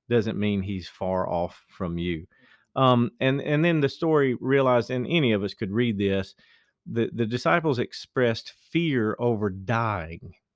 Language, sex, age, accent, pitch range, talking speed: English, male, 40-59, American, 100-125 Hz, 160 wpm